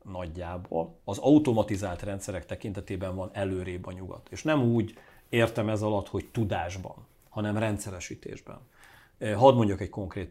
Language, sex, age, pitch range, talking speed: Hungarian, male, 40-59, 95-120 Hz, 135 wpm